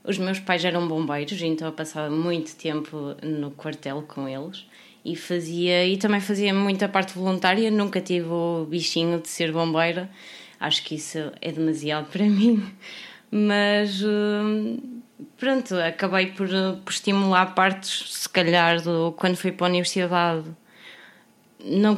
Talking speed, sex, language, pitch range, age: 135 wpm, female, Portuguese, 160-205 Hz, 20-39